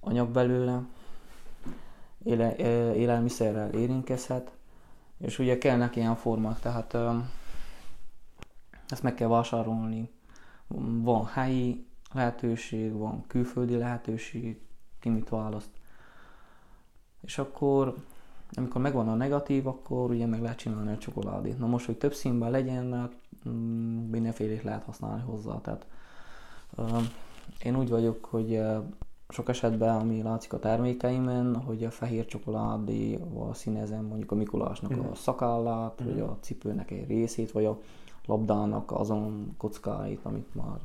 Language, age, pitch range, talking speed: Hungarian, 20-39, 110-125 Hz, 120 wpm